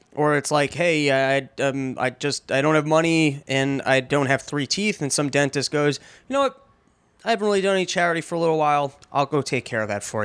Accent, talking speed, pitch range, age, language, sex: American, 250 wpm, 140-180 Hz, 20-39, English, male